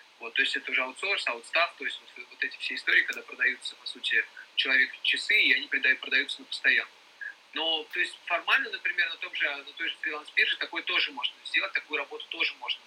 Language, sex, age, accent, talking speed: Russian, male, 30-49, native, 210 wpm